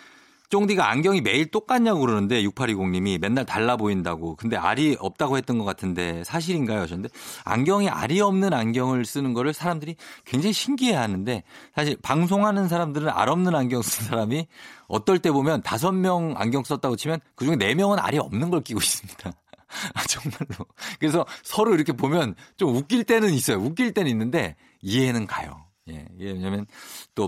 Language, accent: Korean, native